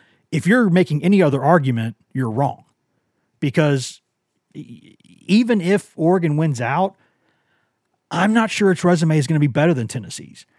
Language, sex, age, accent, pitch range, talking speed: English, male, 40-59, American, 130-165 Hz, 145 wpm